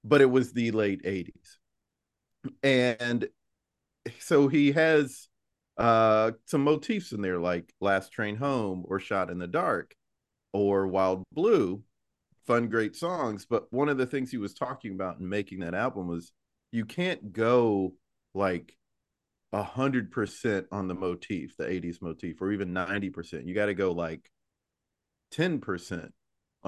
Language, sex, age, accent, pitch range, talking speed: English, male, 40-59, American, 95-130 Hz, 145 wpm